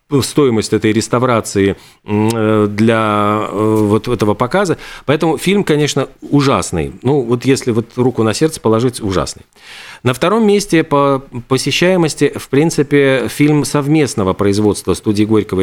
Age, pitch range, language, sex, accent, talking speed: 40-59, 105-140 Hz, Russian, male, native, 125 wpm